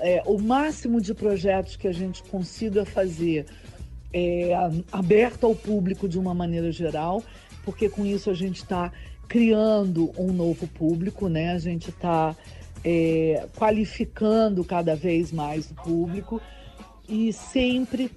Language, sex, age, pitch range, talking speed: Portuguese, female, 50-69, 170-215 Hz, 135 wpm